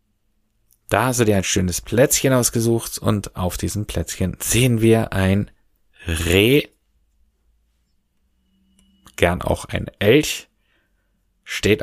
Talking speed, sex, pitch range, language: 105 wpm, male, 85-105 Hz, German